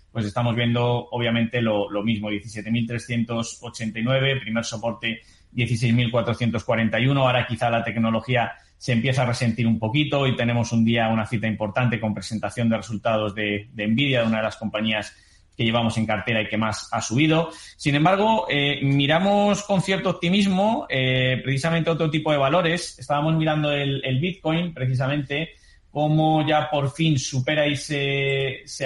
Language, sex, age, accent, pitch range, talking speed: Spanish, male, 20-39, Spanish, 115-140 Hz, 160 wpm